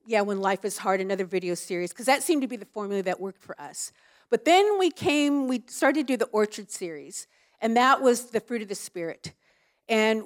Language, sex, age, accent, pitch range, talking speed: English, female, 50-69, American, 195-245 Hz, 230 wpm